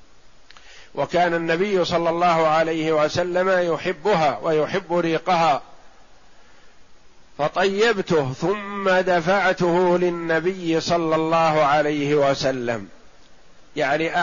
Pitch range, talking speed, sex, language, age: 155-180 Hz, 75 wpm, male, Arabic, 50-69